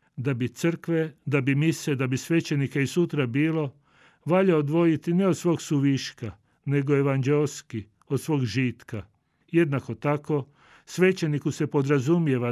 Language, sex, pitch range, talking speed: Croatian, male, 125-155 Hz, 135 wpm